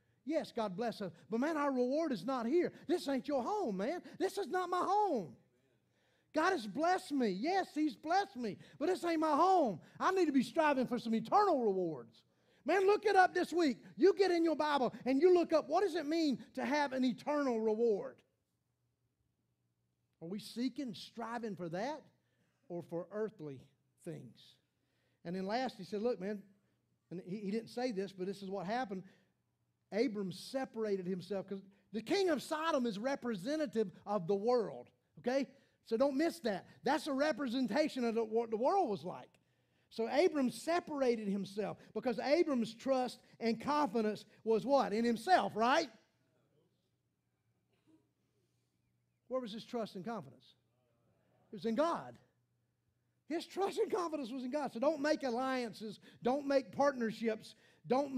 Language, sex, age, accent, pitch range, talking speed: English, male, 40-59, American, 200-300 Hz, 165 wpm